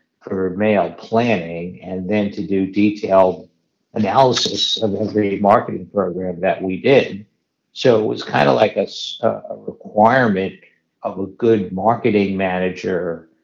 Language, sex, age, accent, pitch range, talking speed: English, male, 50-69, American, 95-115 Hz, 135 wpm